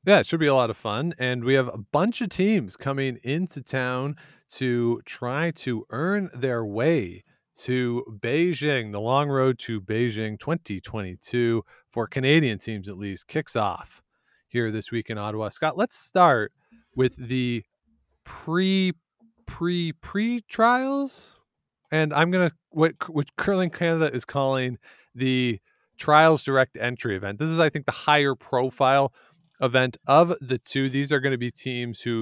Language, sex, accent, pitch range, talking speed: English, male, American, 115-155 Hz, 160 wpm